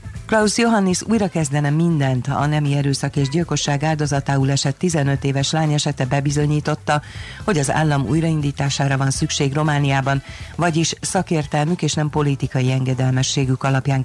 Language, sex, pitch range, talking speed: Hungarian, female, 130-150 Hz, 130 wpm